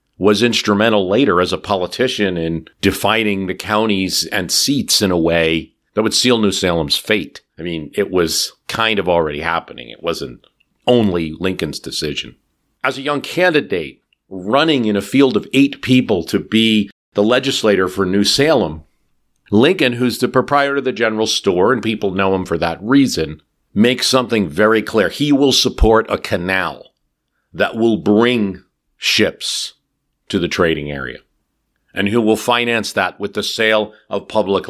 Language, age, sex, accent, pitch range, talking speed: English, 50-69, male, American, 95-125 Hz, 165 wpm